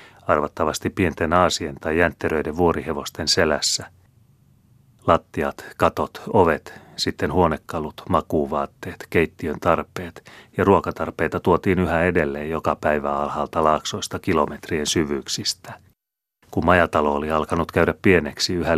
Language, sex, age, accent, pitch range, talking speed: Finnish, male, 30-49, native, 80-90 Hz, 105 wpm